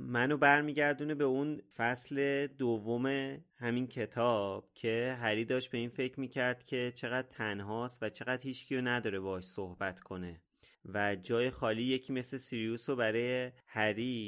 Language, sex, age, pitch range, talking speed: Persian, male, 30-49, 115-140 Hz, 145 wpm